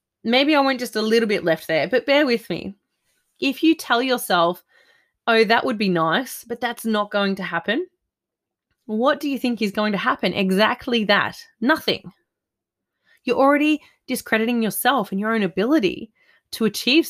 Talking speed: 170 wpm